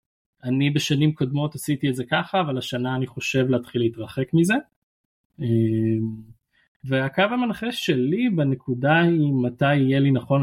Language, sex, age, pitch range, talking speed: Hebrew, male, 20-39, 125-150 Hz, 130 wpm